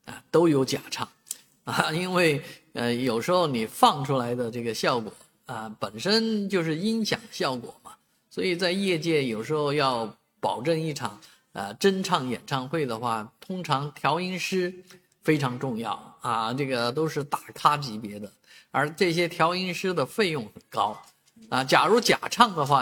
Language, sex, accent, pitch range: Chinese, male, native, 125-170 Hz